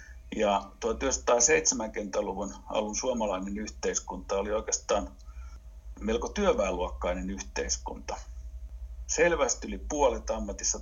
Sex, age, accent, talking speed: male, 60-79, native, 80 wpm